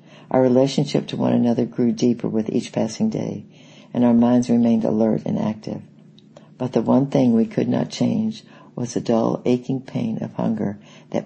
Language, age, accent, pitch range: English, 60-79, American, 115-135 Hz